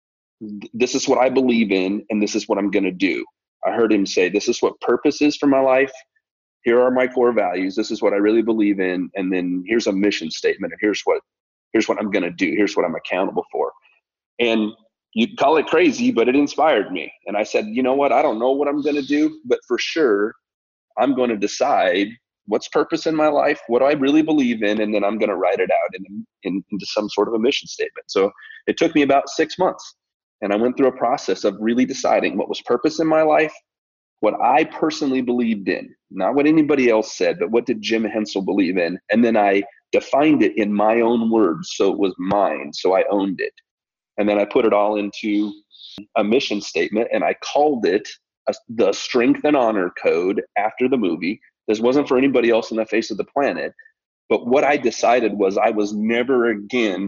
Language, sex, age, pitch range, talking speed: English, male, 30-49, 105-155 Hz, 225 wpm